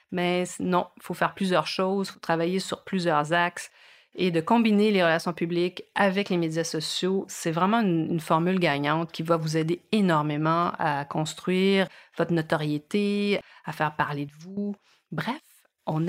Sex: female